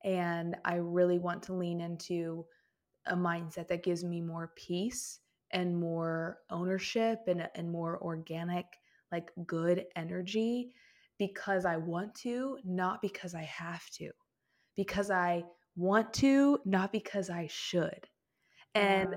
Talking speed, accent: 130 wpm, American